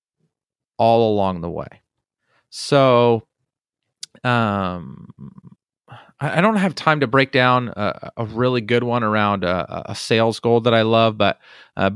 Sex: male